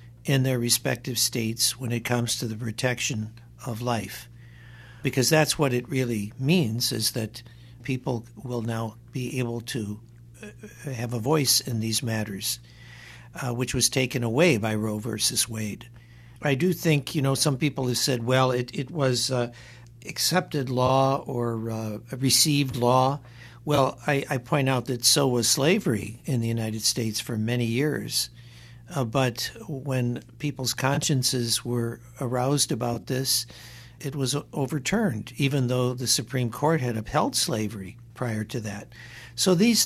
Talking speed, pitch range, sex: 155 wpm, 120-140 Hz, male